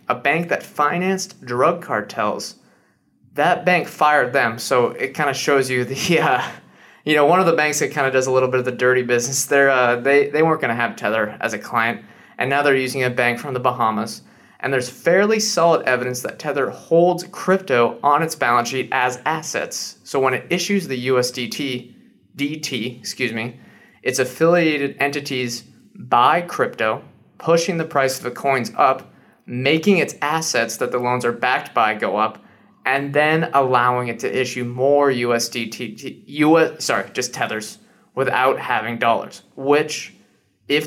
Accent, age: American, 20-39